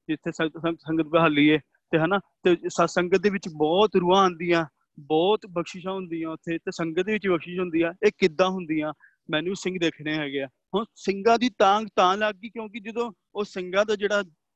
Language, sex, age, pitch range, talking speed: Punjabi, male, 30-49, 165-195 Hz, 115 wpm